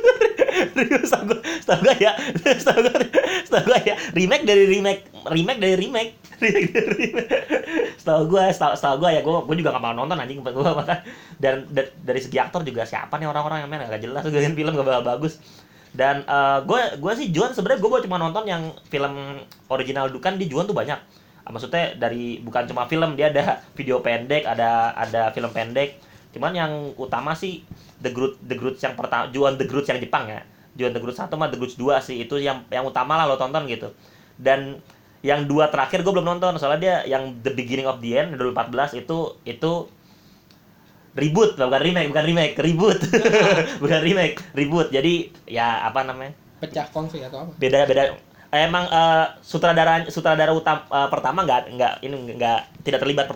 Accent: native